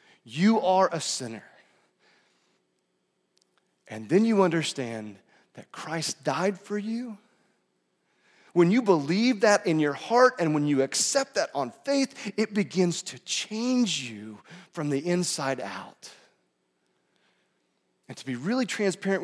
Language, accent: English, American